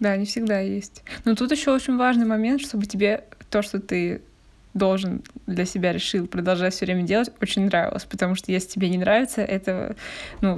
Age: 20-39